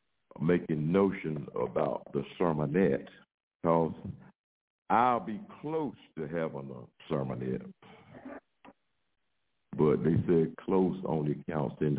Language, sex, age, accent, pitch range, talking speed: English, male, 60-79, American, 70-95 Hz, 100 wpm